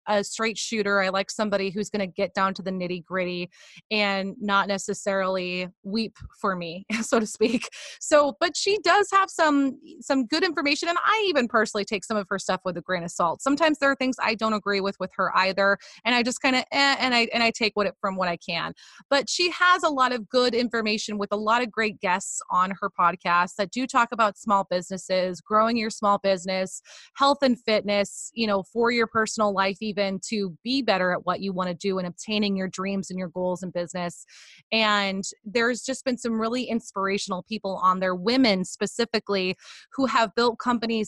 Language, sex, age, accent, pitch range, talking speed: English, female, 20-39, American, 195-240 Hz, 215 wpm